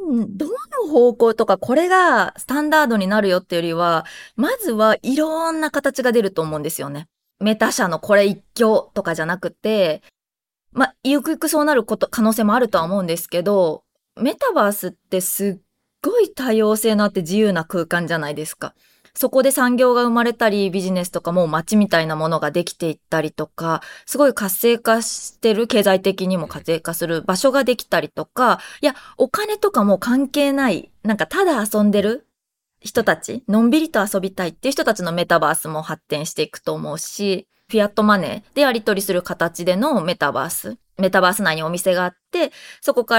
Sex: female